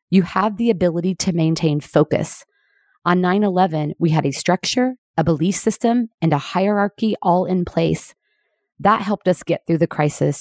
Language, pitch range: English, 165-215 Hz